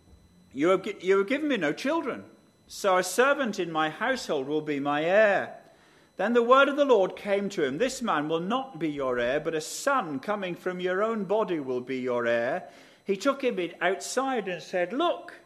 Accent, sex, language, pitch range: British, male, English, 155-245 Hz